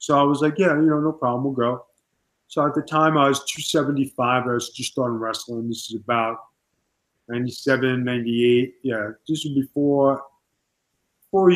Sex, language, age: male, English, 30-49